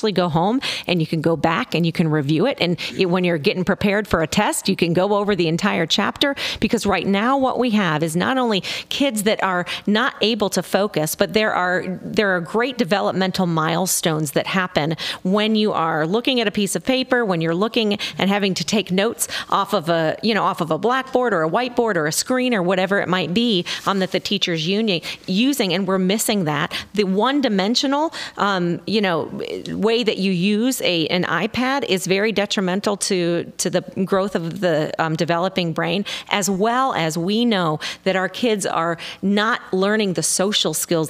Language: English